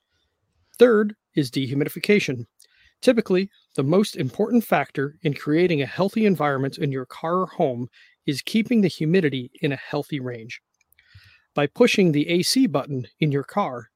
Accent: American